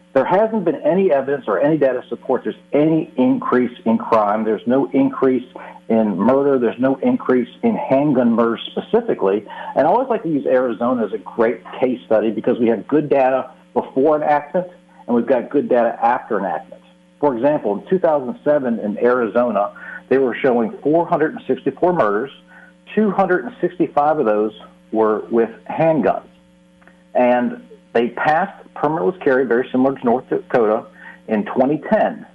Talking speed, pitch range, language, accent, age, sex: 155 wpm, 110-155 Hz, English, American, 50-69, male